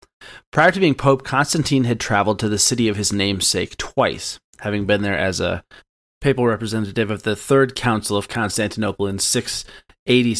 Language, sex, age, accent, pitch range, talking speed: English, male, 30-49, American, 100-125 Hz, 180 wpm